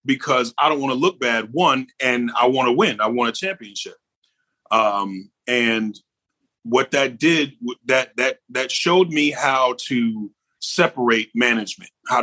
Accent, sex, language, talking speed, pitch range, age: American, male, English, 155 wpm, 115-150 Hz, 30-49